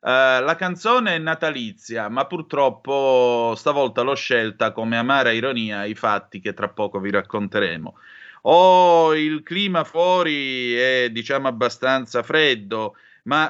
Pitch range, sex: 115-140 Hz, male